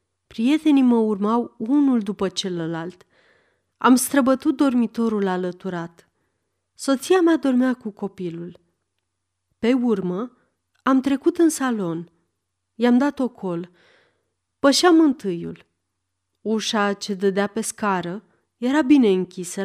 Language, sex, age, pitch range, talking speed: Romanian, female, 30-49, 180-260 Hz, 105 wpm